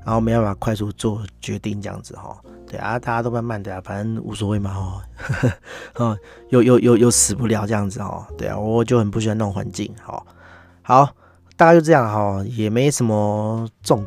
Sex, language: male, Chinese